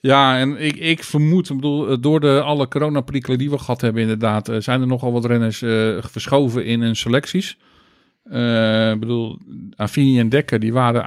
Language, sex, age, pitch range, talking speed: Dutch, male, 50-69, 110-135 Hz, 185 wpm